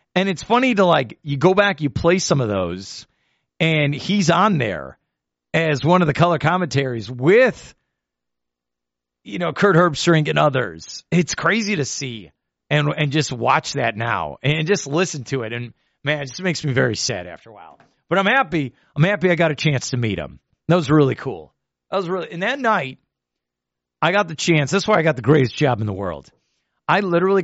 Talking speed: 205 wpm